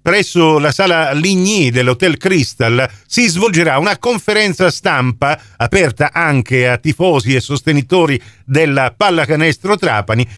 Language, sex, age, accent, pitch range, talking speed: Italian, male, 50-69, native, 125-165 Hz, 115 wpm